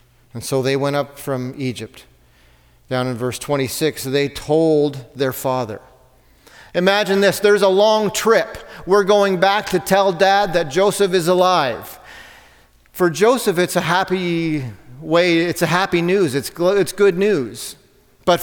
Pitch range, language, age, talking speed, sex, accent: 155-200 Hz, English, 40-59, 150 wpm, male, American